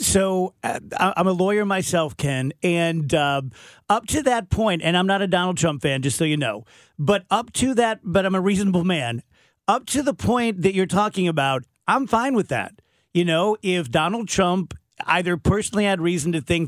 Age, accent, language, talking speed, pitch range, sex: 40-59, American, English, 200 wpm, 155-200 Hz, male